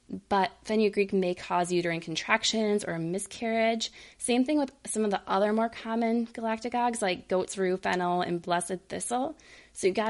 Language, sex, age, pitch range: English, female, 20-39, 175-220 Hz